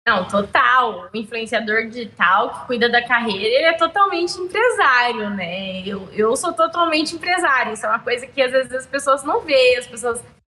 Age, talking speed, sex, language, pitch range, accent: 20-39, 185 wpm, female, Portuguese, 225-275 Hz, Brazilian